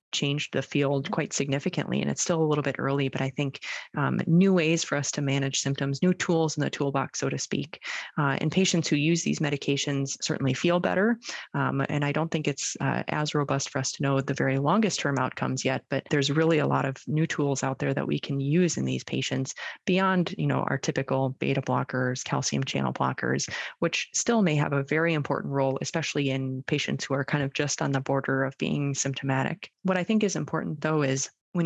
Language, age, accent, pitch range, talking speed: English, 20-39, American, 140-160 Hz, 225 wpm